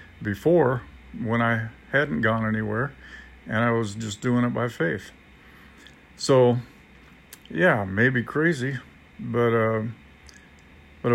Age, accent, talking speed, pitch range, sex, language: 50-69, American, 115 wpm, 110-125 Hz, male, English